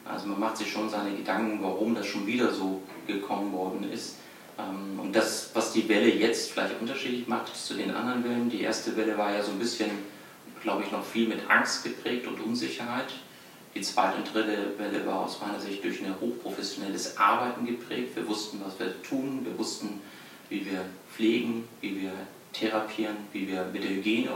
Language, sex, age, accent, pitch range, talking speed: German, male, 40-59, German, 100-120 Hz, 190 wpm